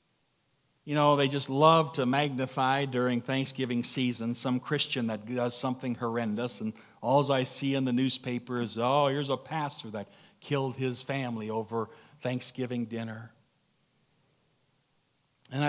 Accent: American